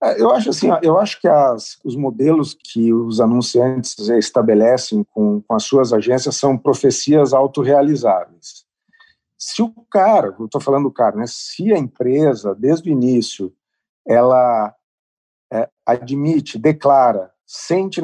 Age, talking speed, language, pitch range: 50-69, 135 wpm, Portuguese, 125-160 Hz